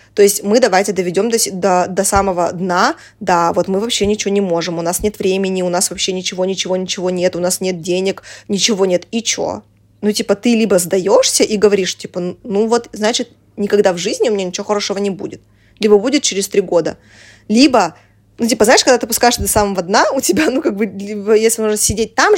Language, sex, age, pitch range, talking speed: Russian, female, 20-39, 185-220 Hz, 210 wpm